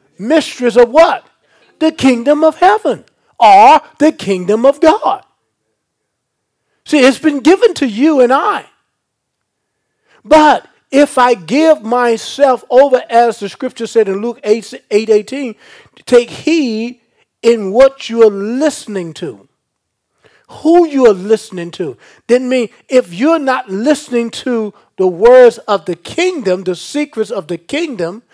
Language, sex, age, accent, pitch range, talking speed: English, male, 40-59, American, 180-270 Hz, 140 wpm